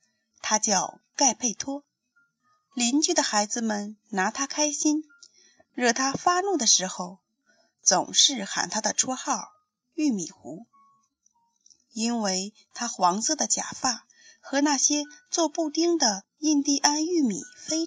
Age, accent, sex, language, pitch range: 30-49, native, female, Chinese, 220-325 Hz